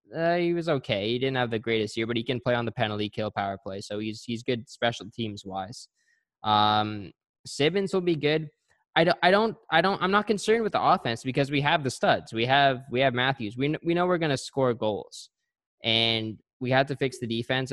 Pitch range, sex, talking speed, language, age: 115-140 Hz, male, 235 wpm, English, 10-29